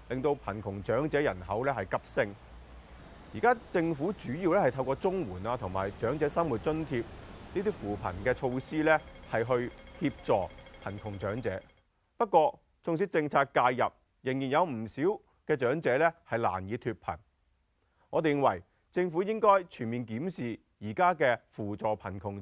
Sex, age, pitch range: male, 30-49, 100-150 Hz